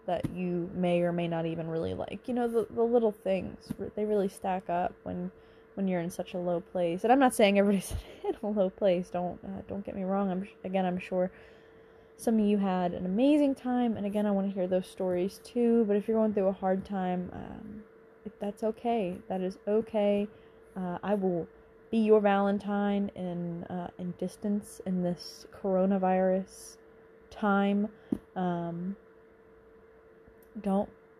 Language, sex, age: English, female, 20-39